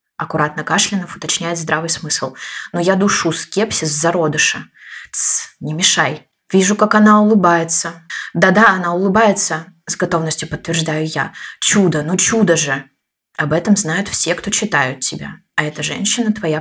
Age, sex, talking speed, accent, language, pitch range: 20-39, female, 135 wpm, native, Russian, 160-190 Hz